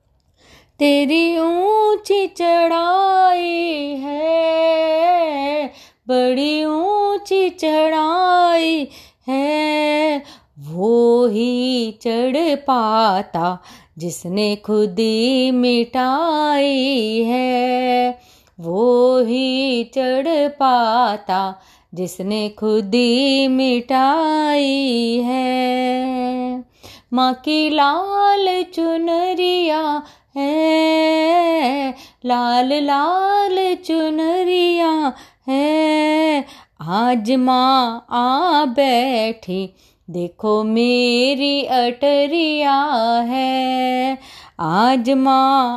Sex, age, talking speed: female, 30-49, 55 wpm